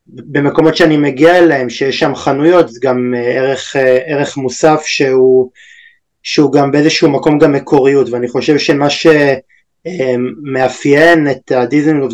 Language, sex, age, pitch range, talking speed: Hebrew, male, 20-39, 130-160 Hz, 125 wpm